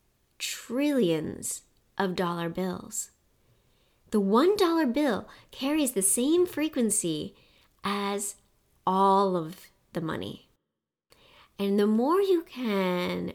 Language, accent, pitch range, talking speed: English, American, 185-270 Hz, 100 wpm